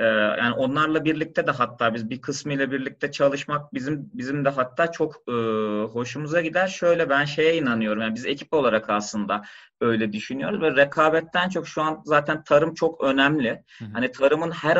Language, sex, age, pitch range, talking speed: Turkish, male, 30-49, 120-155 Hz, 160 wpm